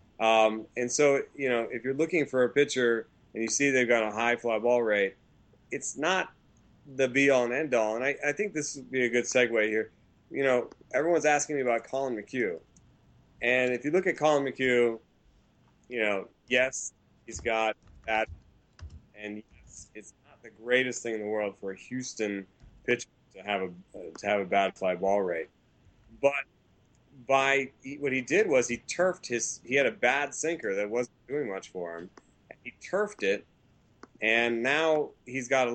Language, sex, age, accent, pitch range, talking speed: English, male, 30-49, American, 110-135 Hz, 195 wpm